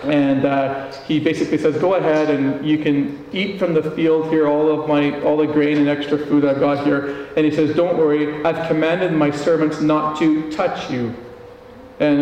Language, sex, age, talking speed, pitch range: English, male, 40-59, 200 wpm, 145-175 Hz